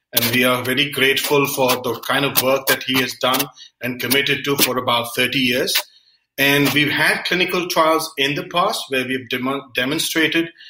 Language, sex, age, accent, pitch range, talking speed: English, male, 40-59, Indian, 130-150 Hz, 185 wpm